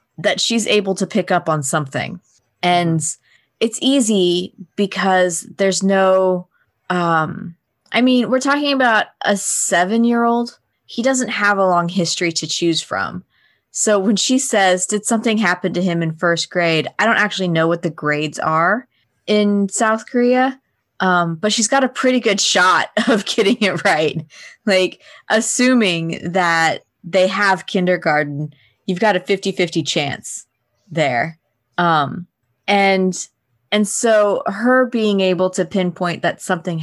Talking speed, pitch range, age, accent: 145 wpm, 165-210 Hz, 20-39, American